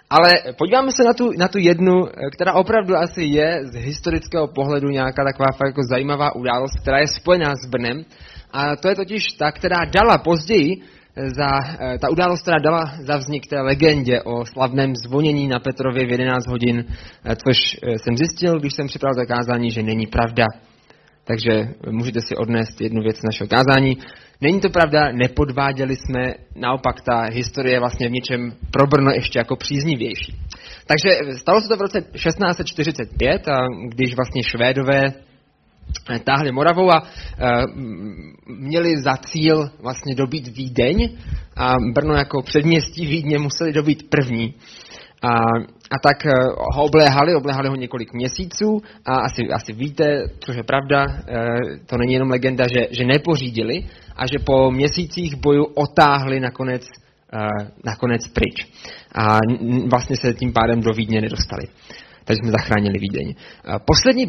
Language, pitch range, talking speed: Czech, 120-150 Hz, 145 wpm